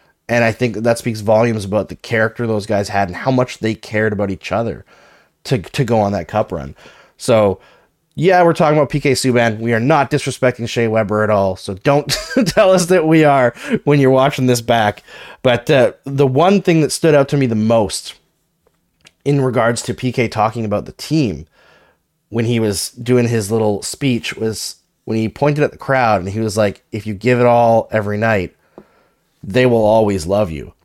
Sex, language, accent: male, English, American